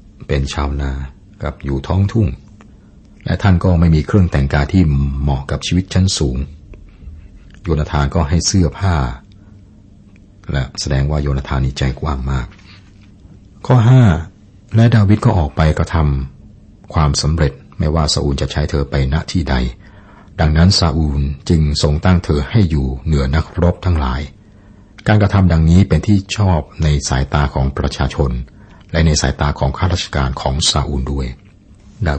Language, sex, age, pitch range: Thai, male, 60-79, 70-95 Hz